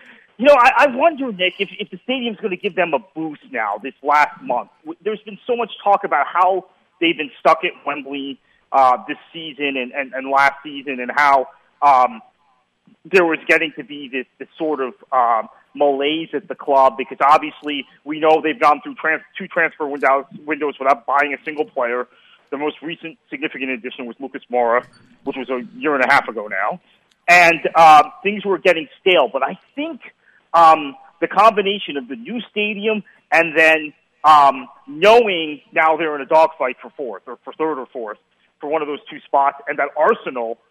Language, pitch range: English, 140-190 Hz